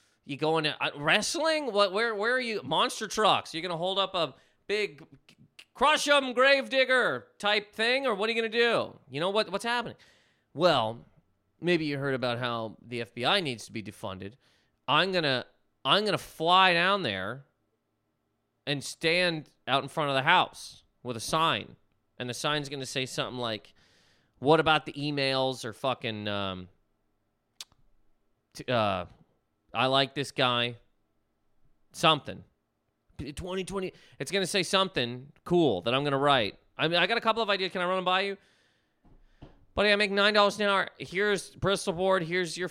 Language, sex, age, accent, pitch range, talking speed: English, male, 30-49, American, 125-190 Hz, 175 wpm